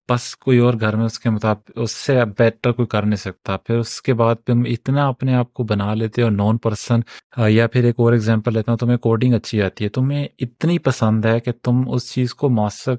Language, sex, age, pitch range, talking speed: Urdu, male, 30-49, 110-130 Hz, 230 wpm